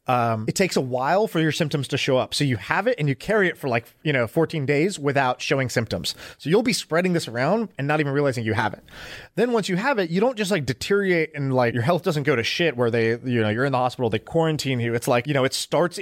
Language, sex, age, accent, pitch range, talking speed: English, male, 30-49, American, 130-170 Hz, 285 wpm